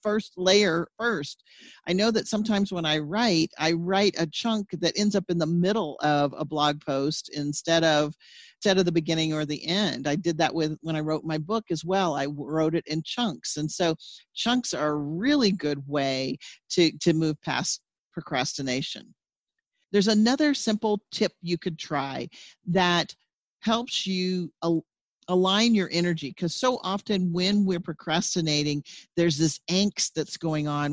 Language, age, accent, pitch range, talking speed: English, 50-69, American, 155-205 Hz, 170 wpm